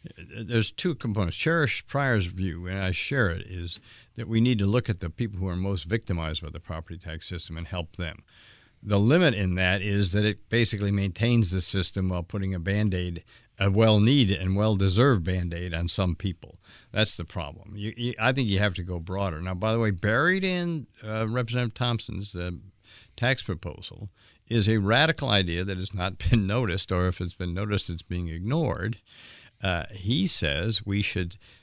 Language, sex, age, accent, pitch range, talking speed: English, male, 60-79, American, 90-110 Hz, 190 wpm